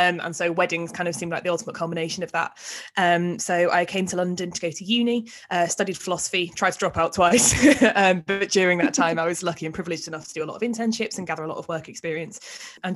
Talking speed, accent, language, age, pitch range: 260 wpm, British, English, 20-39, 165-180 Hz